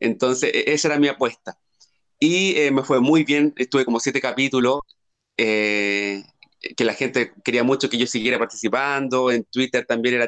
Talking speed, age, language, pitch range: 170 wpm, 30-49, English, 115-140 Hz